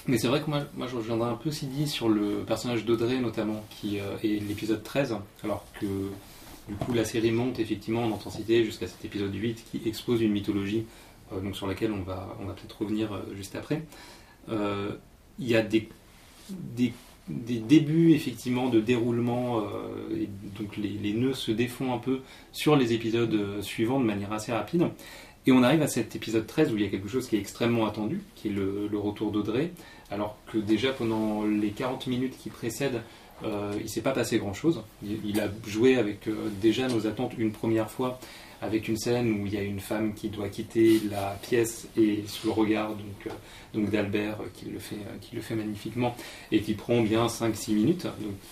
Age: 30-49